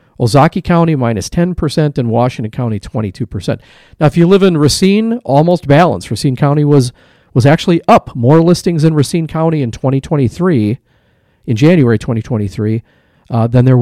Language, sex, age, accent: English, male, 40-59, American